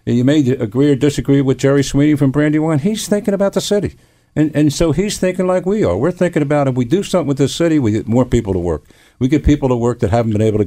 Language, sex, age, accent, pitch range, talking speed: English, male, 50-69, American, 105-150 Hz, 280 wpm